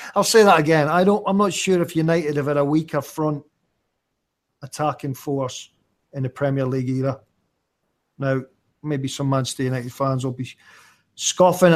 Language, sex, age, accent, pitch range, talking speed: English, male, 40-59, British, 130-150 Hz, 165 wpm